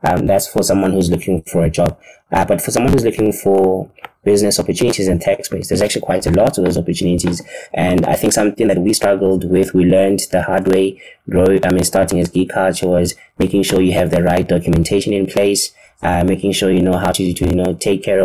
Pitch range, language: 90-95 Hz, English